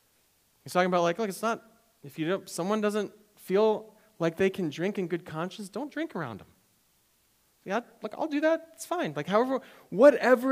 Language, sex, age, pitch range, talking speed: English, male, 40-59, 145-195 Hz, 195 wpm